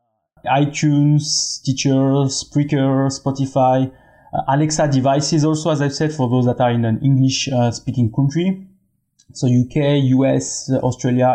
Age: 20-39